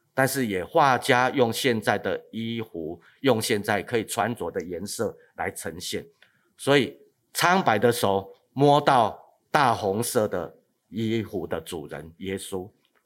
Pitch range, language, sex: 105-145 Hz, Chinese, male